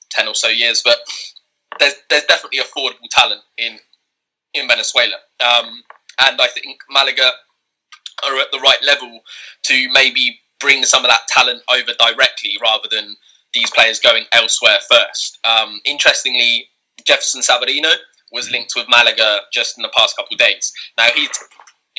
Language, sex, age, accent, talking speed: English, male, 10-29, British, 155 wpm